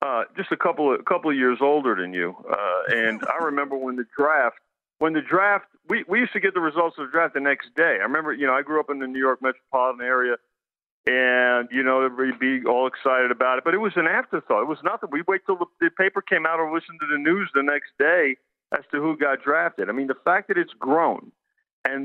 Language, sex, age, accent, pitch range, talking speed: English, male, 50-69, American, 130-170 Hz, 260 wpm